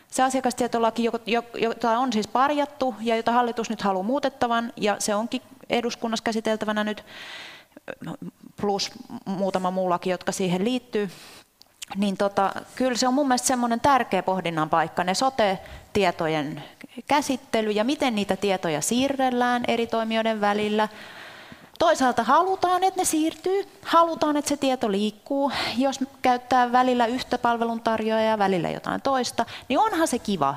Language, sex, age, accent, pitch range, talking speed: Finnish, female, 30-49, native, 195-255 Hz, 135 wpm